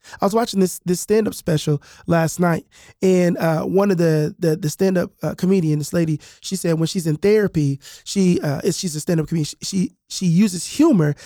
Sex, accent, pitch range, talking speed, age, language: male, American, 155-215 Hz, 195 wpm, 20-39, English